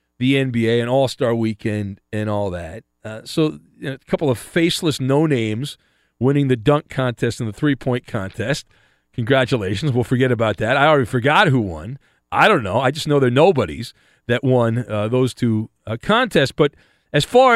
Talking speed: 185 wpm